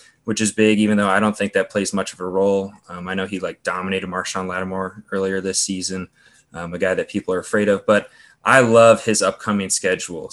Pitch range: 95-110 Hz